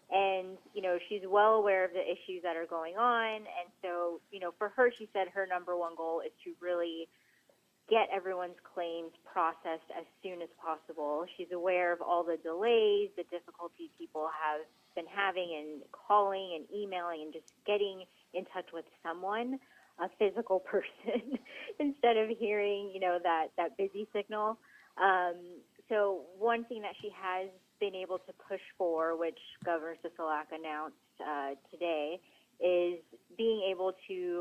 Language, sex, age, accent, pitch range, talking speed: English, female, 30-49, American, 165-205 Hz, 160 wpm